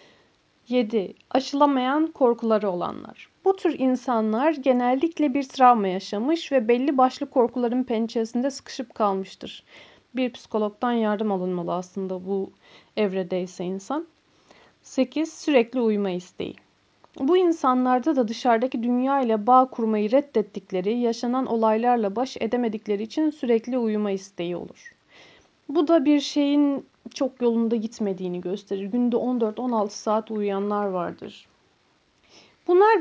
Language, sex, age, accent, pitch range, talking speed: Turkish, female, 40-59, native, 210-260 Hz, 115 wpm